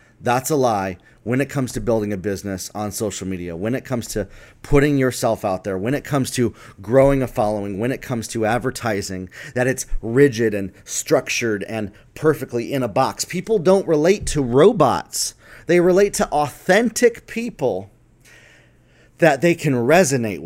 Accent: American